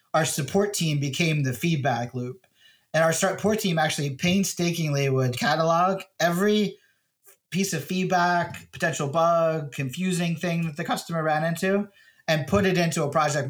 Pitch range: 130-170 Hz